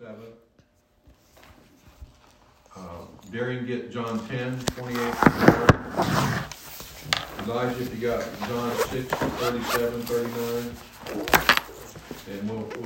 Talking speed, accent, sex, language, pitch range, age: 60 wpm, American, male, English, 110-130 Hz, 60-79